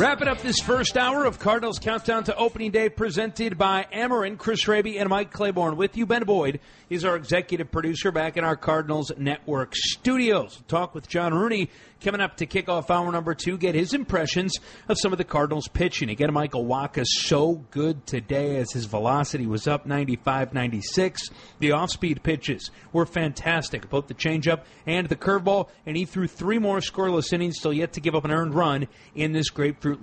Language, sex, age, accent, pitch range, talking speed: English, male, 40-59, American, 150-200 Hz, 190 wpm